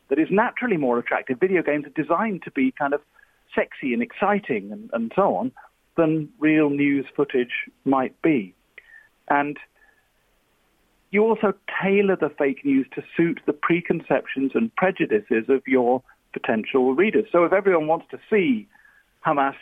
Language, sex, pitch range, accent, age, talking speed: English, male, 130-210 Hz, British, 40-59, 155 wpm